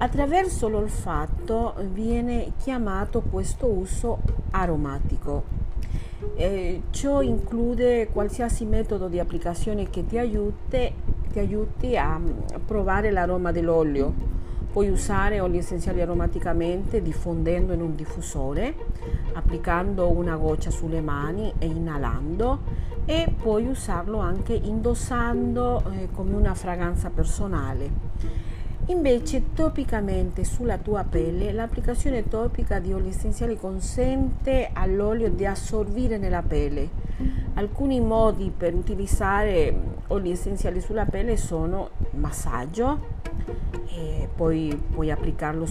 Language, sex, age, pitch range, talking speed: Italian, female, 40-59, 160-225 Hz, 105 wpm